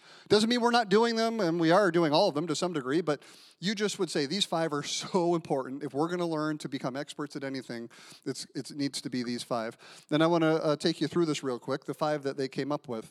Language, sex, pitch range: English, male, 135-170 Hz